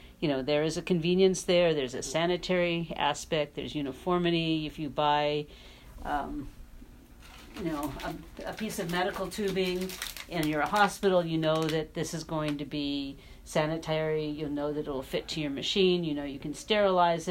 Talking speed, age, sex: 180 wpm, 50-69, female